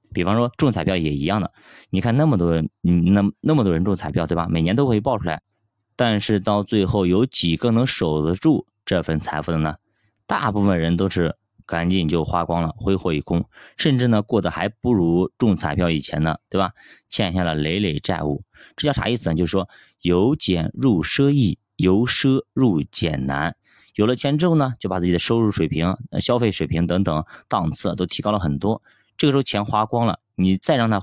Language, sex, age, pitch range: Chinese, male, 20-39, 85-115 Hz